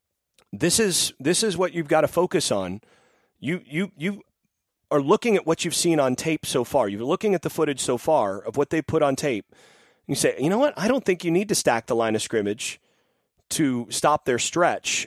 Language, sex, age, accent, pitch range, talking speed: English, male, 30-49, American, 120-175 Hz, 225 wpm